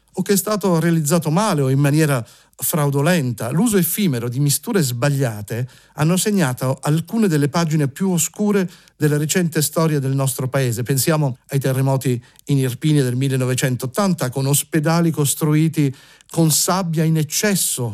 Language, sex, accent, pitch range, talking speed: Italian, male, native, 130-160 Hz, 140 wpm